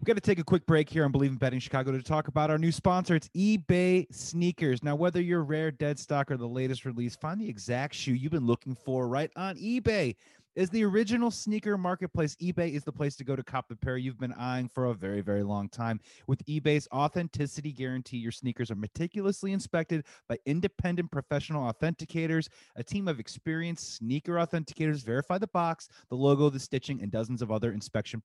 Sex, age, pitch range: male, 30-49, 130-180 Hz